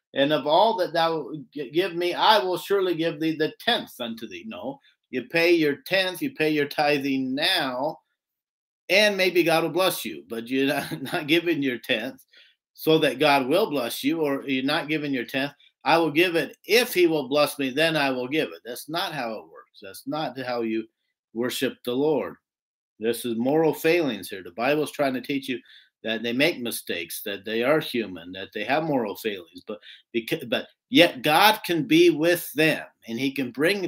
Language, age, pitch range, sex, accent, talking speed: English, 50-69, 125-170 Hz, male, American, 200 wpm